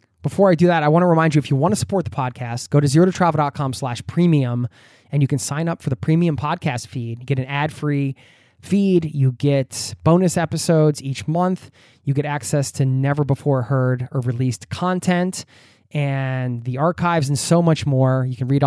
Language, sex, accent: English, male, American